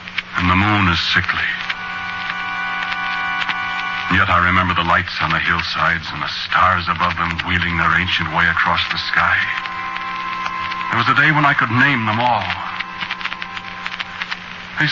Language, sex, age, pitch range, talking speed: English, male, 60-79, 80-100 Hz, 145 wpm